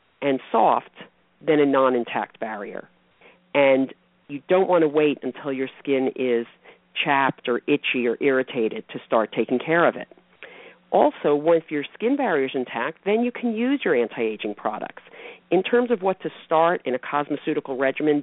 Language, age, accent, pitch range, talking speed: English, 50-69, American, 130-170 Hz, 175 wpm